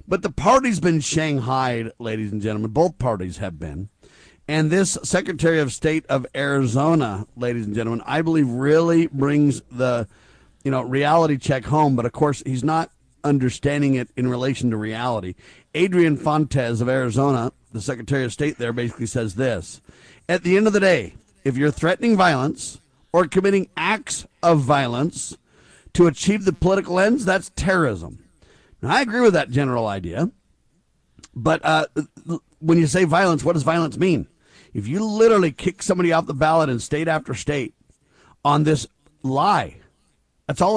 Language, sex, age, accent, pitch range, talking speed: English, male, 50-69, American, 120-165 Hz, 160 wpm